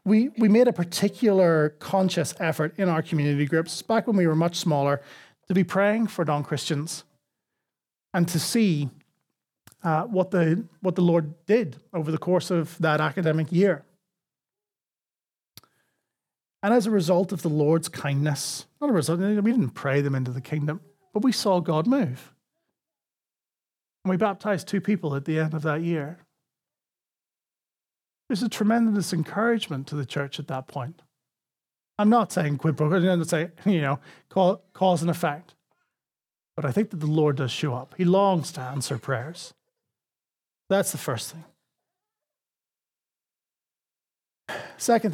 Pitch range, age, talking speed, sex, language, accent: 150-200 Hz, 30-49, 155 wpm, male, English, Irish